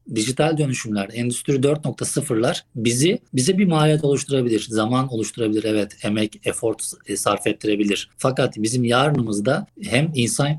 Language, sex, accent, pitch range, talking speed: Turkish, male, native, 115-150 Hz, 120 wpm